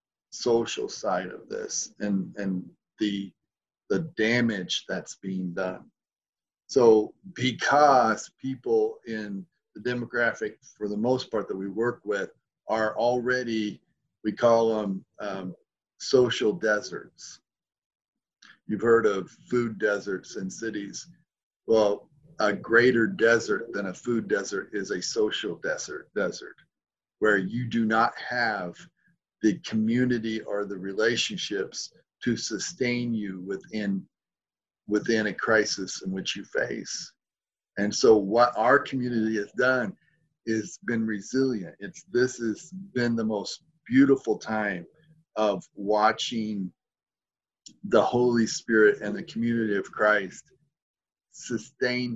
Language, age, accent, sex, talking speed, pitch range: English, 40-59, American, male, 120 wpm, 105-130 Hz